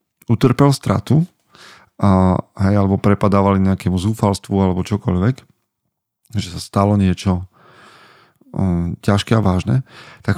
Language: Slovak